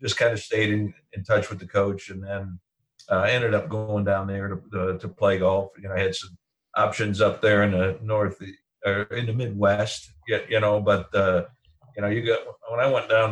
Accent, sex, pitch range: American, male, 95-110 Hz